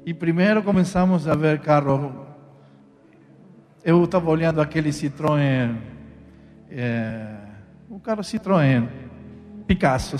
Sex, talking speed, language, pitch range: male, 90 wpm, Portuguese, 125-185 Hz